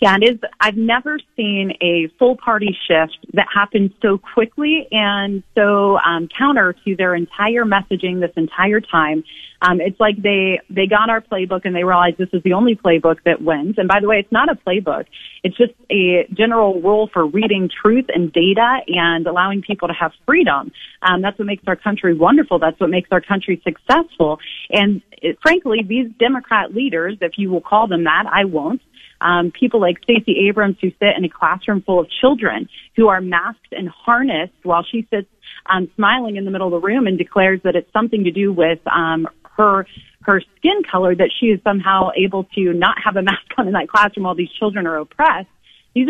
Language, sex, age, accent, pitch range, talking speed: English, female, 30-49, American, 180-225 Hz, 200 wpm